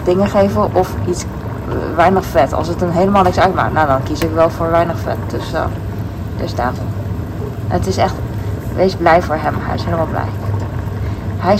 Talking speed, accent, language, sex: 185 wpm, Dutch, Dutch, female